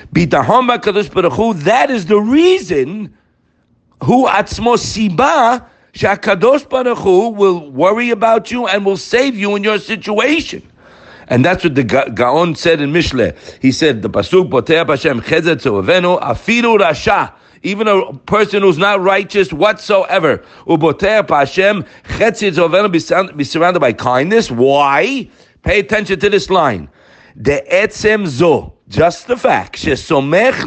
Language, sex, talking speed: English, male, 110 wpm